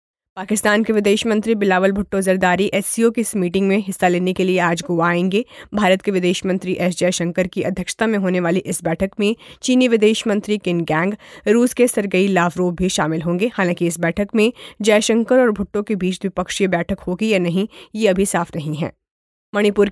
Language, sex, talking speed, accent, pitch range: Hindi, female, 200 wpm, native, 180-210 Hz